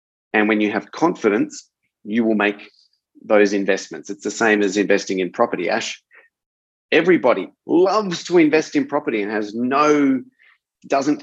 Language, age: English, 30-49